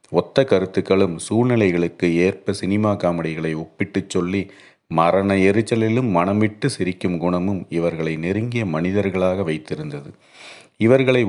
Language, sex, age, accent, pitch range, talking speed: Tamil, male, 40-59, native, 85-105 Hz, 95 wpm